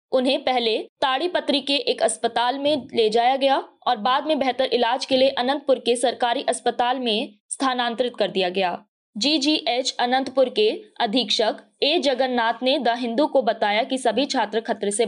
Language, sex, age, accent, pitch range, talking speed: Hindi, female, 20-39, native, 225-275 Hz, 165 wpm